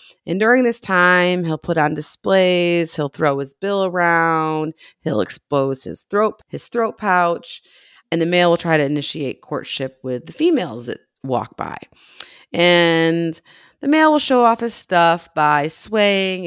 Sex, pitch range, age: female, 145-180 Hz, 30-49